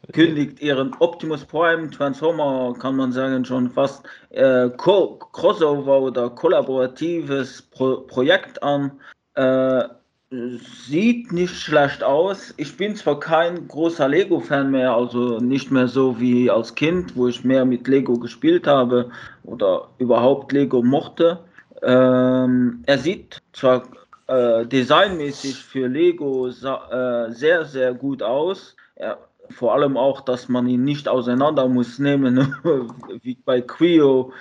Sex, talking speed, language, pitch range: male, 130 wpm, German, 125-150 Hz